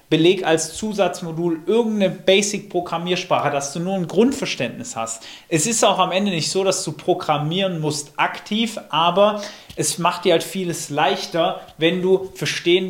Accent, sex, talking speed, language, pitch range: German, male, 155 wpm, German, 145-180 Hz